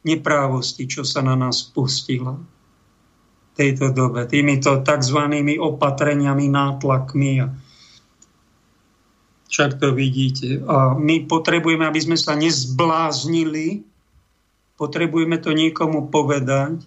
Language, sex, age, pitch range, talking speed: Slovak, male, 50-69, 135-165 Hz, 95 wpm